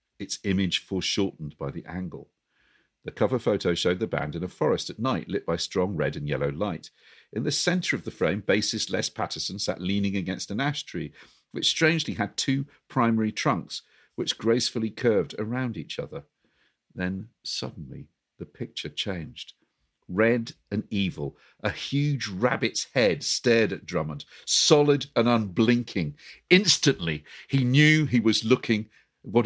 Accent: British